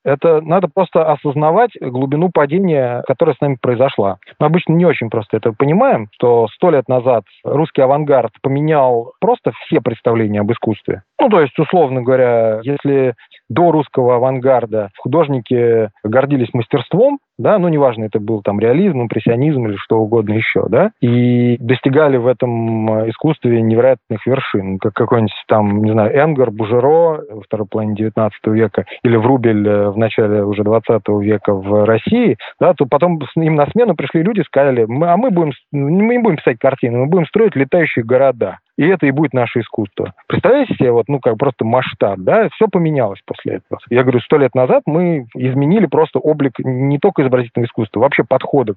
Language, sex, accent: Russian, male, native